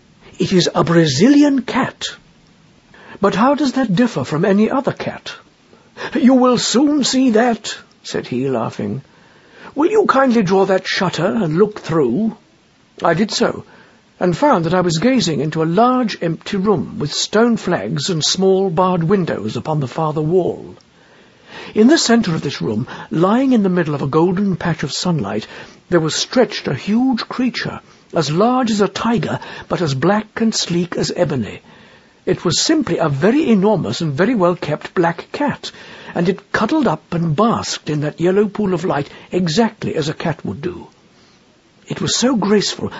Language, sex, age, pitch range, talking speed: English, male, 60-79, 165-230 Hz, 170 wpm